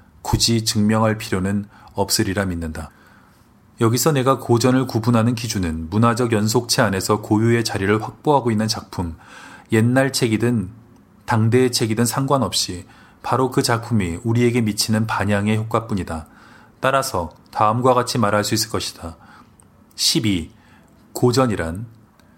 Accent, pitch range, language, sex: native, 100-125 Hz, Korean, male